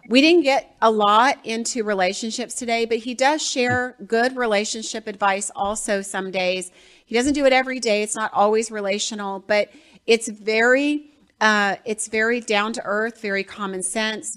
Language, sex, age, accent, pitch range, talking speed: English, female, 40-59, American, 185-220 Hz, 165 wpm